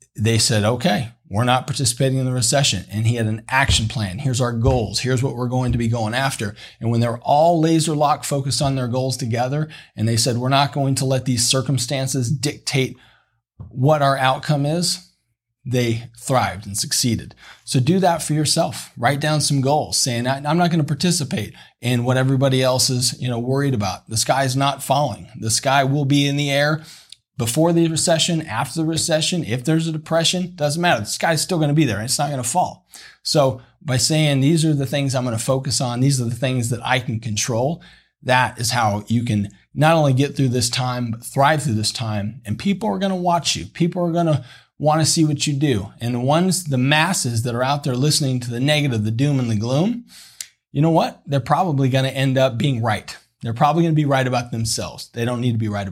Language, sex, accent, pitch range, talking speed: English, male, American, 120-150 Hz, 230 wpm